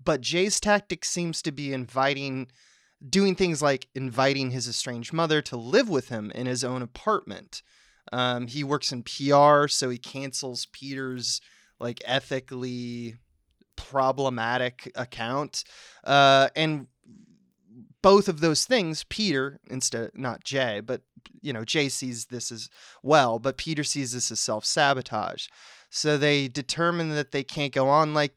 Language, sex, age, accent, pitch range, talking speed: English, male, 20-39, American, 125-145 Hz, 145 wpm